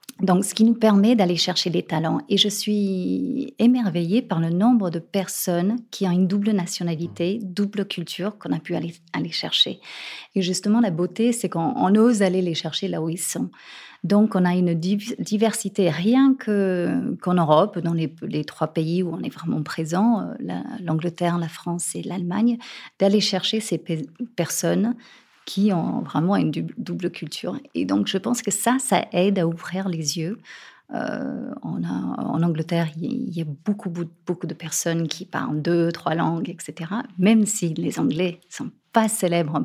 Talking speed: 180 wpm